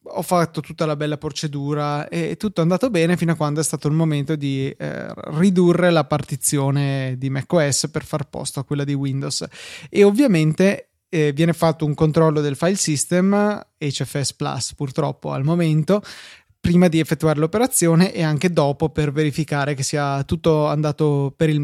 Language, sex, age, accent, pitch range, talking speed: Italian, male, 20-39, native, 145-165 Hz, 170 wpm